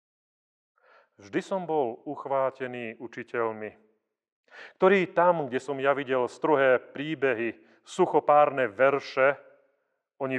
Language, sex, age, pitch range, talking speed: Slovak, male, 40-59, 110-155 Hz, 90 wpm